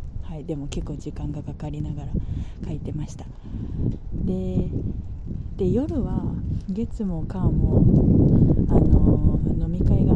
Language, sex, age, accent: Japanese, female, 30-49, native